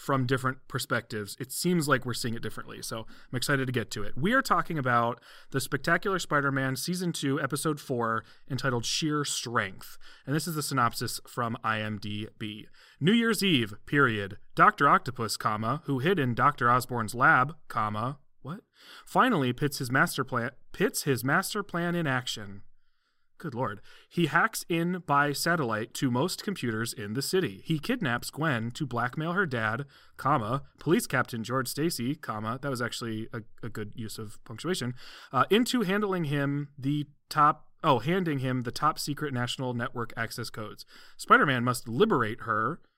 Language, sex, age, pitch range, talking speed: English, male, 30-49, 120-160 Hz, 165 wpm